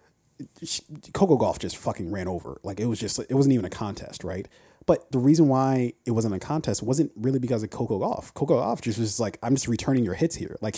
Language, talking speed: English, 235 wpm